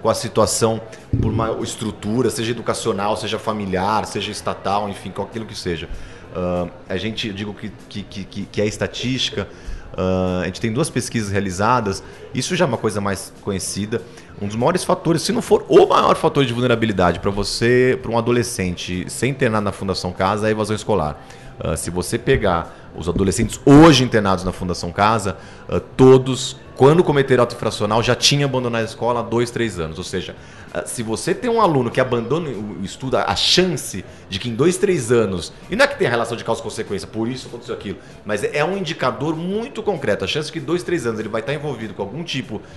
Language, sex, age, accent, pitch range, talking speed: Portuguese, male, 30-49, Brazilian, 95-130 Hz, 200 wpm